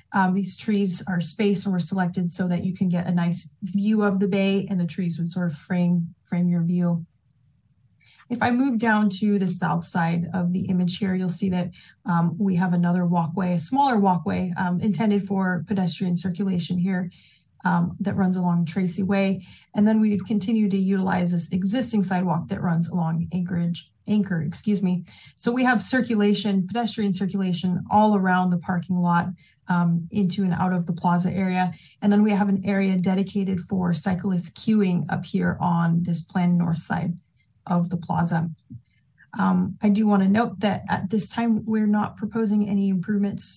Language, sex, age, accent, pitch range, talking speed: English, female, 30-49, American, 175-200 Hz, 185 wpm